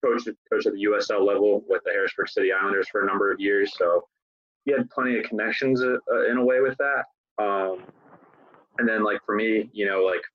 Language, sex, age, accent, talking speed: English, male, 20-39, American, 205 wpm